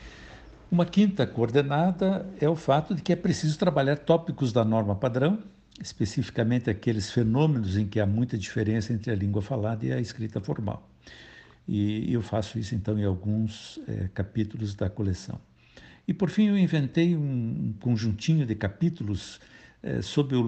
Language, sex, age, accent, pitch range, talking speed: Portuguese, male, 60-79, Brazilian, 105-145 Hz, 150 wpm